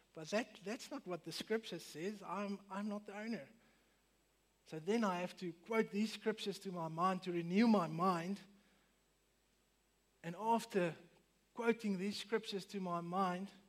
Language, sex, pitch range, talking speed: English, male, 170-205 Hz, 160 wpm